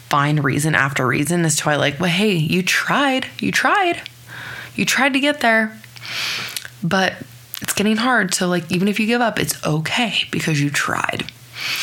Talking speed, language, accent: 180 wpm, English, American